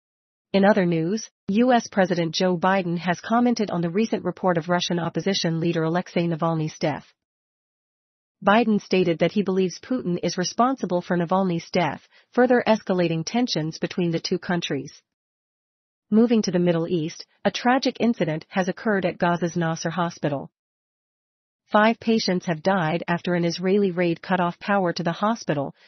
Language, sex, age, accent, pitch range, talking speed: English, female, 40-59, American, 170-210 Hz, 155 wpm